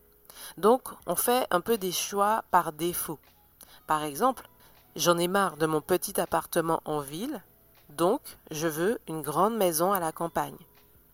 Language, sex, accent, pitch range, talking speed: French, female, French, 160-205 Hz, 155 wpm